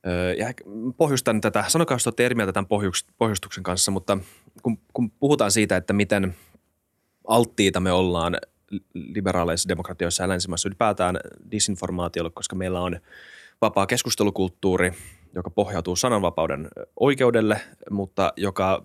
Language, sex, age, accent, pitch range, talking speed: Finnish, male, 20-39, native, 90-110 Hz, 115 wpm